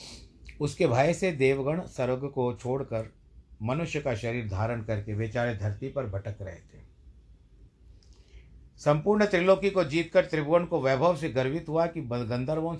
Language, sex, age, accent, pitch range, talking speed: Hindi, male, 50-69, native, 100-135 Hz, 140 wpm